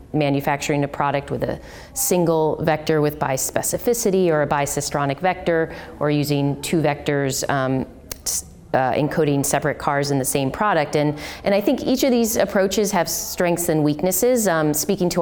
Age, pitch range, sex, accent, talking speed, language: 30-49, 145-170 Hz, female, American, 160 wpm, English